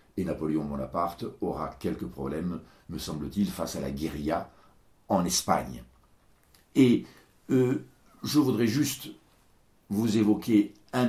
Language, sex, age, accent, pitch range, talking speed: French, male, 60-79, French, 80-105 Hz, 120 wpm